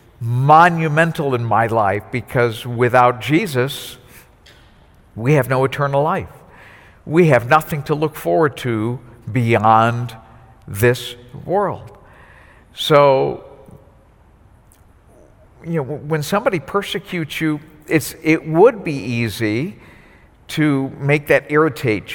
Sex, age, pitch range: male, 60-79, 120-155 Hz